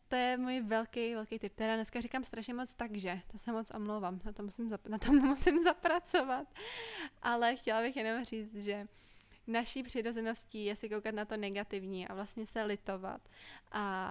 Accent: native